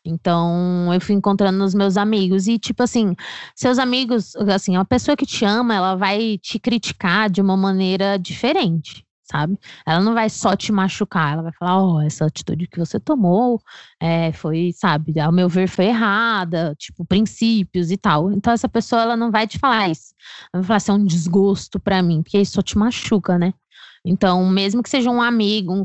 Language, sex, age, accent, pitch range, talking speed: Portuguese, female, 20-39, Brazilian, 175-215 Hz, 195 wpm